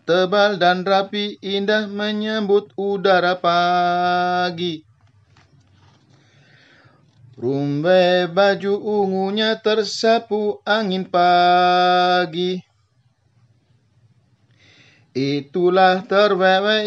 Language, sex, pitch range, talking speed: Indonesian, male, 125-200 Hz, 55 wpm